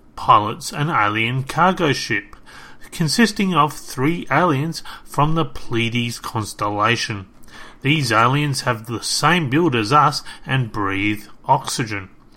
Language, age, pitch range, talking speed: English, 30-49, 115-150 Hz, 115 wpm